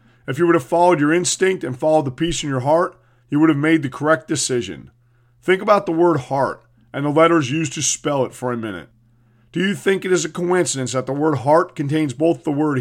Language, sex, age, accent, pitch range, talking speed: English, male, 40-59, American, 130-165 Hz, 240 wpm